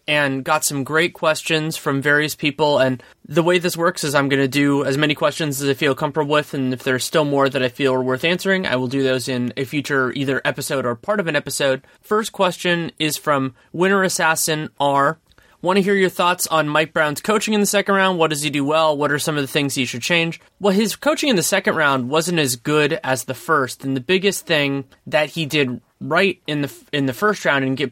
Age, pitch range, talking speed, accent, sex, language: 20-39, 135-175 Hz, 245 wpm, American, male, English